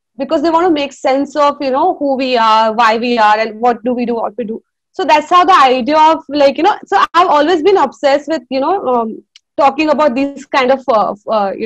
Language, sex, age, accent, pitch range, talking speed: English, female, 20-39, Indian, 245-315 Hz, 250 wpm